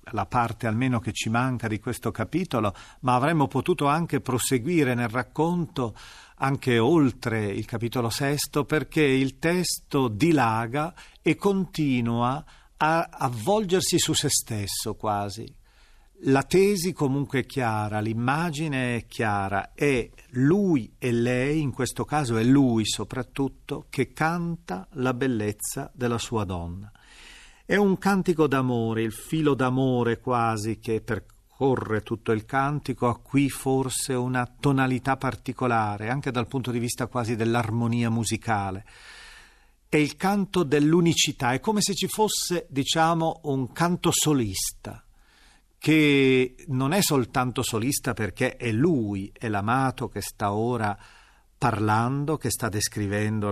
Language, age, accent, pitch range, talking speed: Italian, 40-59, native, 115-150 Hz, 130 wpm